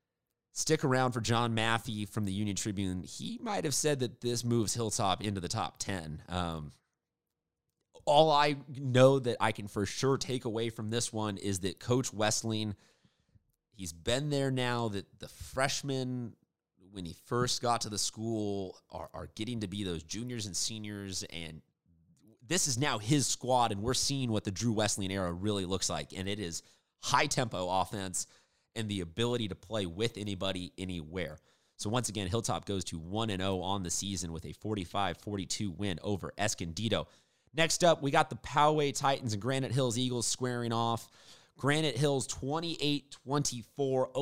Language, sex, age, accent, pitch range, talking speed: English, male, 30-49, American, 100-125 Hz, 170 wpm